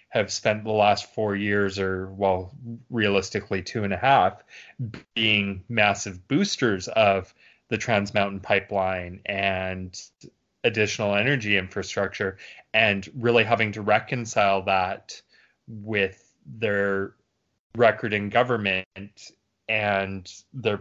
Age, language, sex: 20-39, English, male